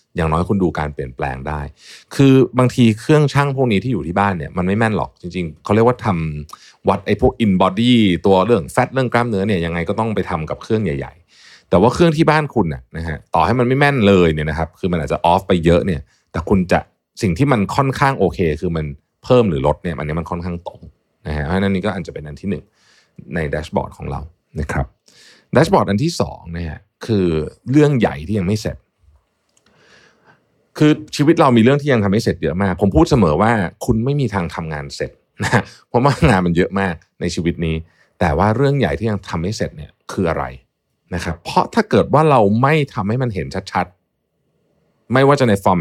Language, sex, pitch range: Thai, male, 80-120 Hz